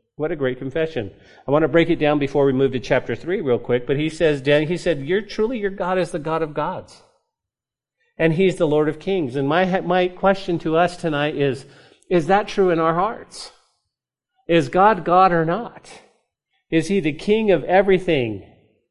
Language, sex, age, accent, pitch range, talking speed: English, male, 50-69, American, 125-175 Hz, 205 wpm